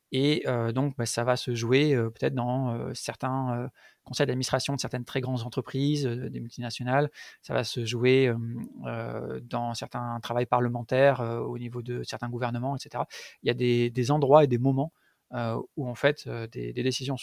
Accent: French